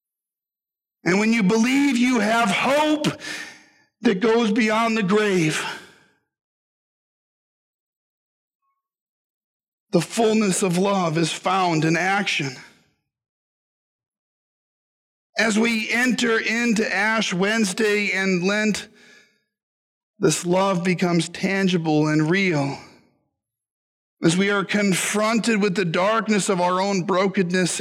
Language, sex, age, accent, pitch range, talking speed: English, male, 50-69, American, 175-225 Hz, 95 wpm